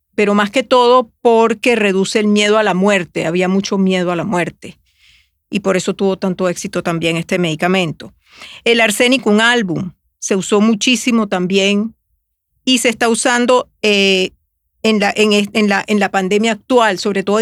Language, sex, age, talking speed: Spanish, female, 40-59, 160 wpm